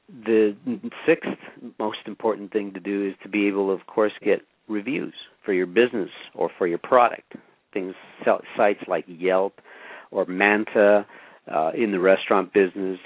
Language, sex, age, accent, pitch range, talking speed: English, male, 50-69, American, 95-105 Hz, 150 wpm